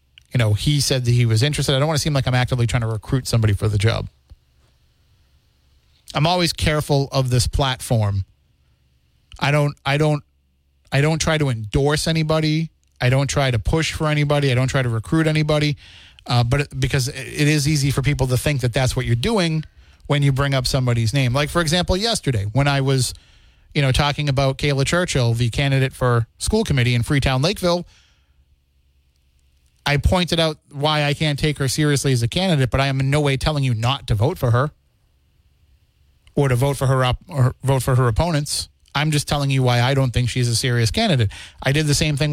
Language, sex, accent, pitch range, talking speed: English, male, American, 115-145 Hz, 210 wpm